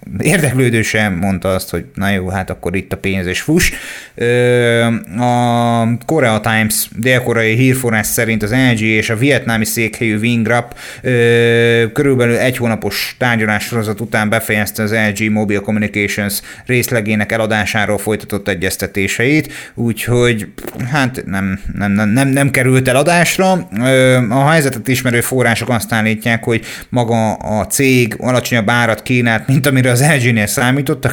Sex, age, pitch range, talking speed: male, 30-49, 110-130 Hz, 135 wpm